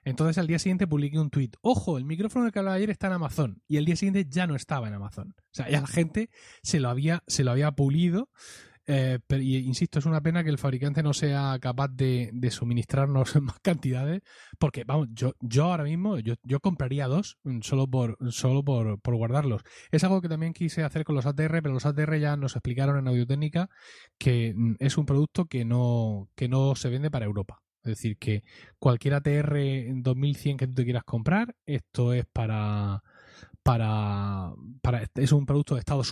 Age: 20-39